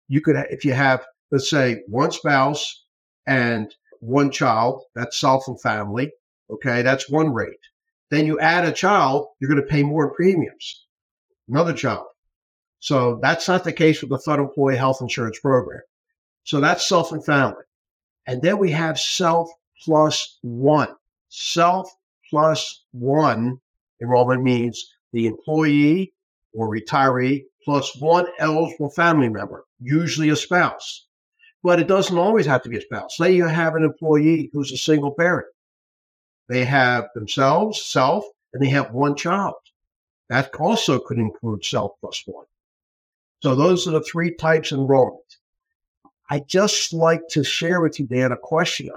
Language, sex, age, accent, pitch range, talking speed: English, male, 50-69, American, 130-165 Hz, 155 wpm